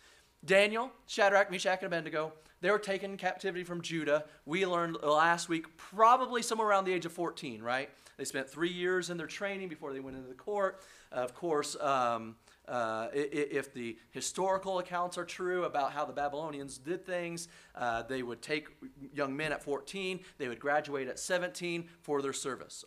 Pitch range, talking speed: 140-180 Hz, 180 wpm